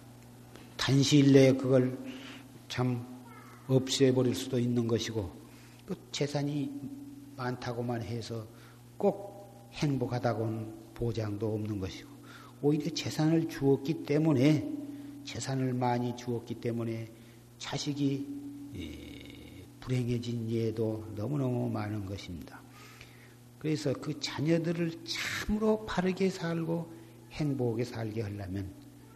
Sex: male